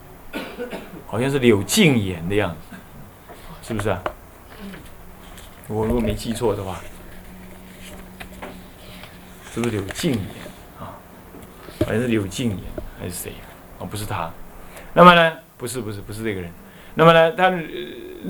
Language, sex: Chinese, male